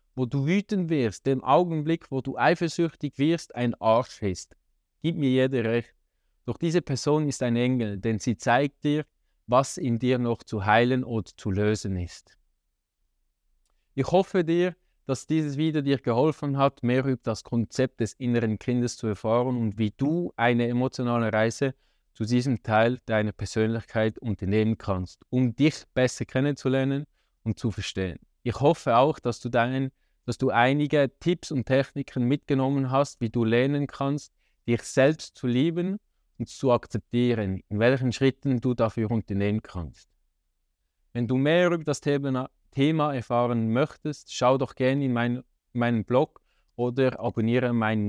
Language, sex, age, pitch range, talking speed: German, male, 20-39, 110-135 Hz, 155 wpm